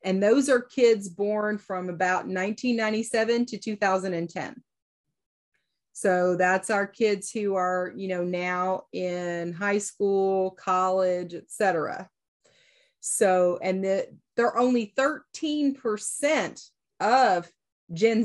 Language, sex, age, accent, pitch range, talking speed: English, female, 30-49, American, 180-215 Hz, 105 wpm